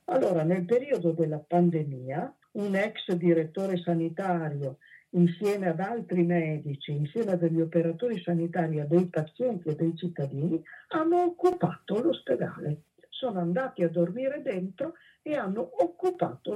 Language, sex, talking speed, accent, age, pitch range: Italian, female, 120 wpm, native, 50-69, 160-210 Hz